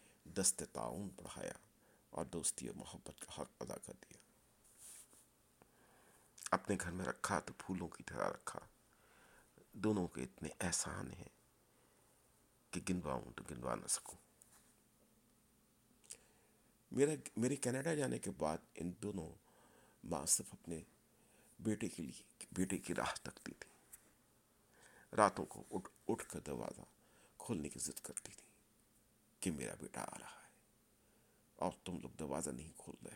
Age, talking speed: 50-69, 135 wpm